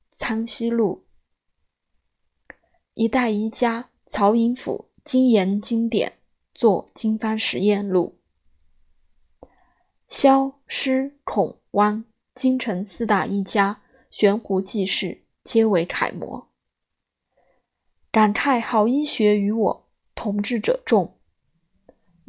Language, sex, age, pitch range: Chinese, female, 20-39, 205-255 Hz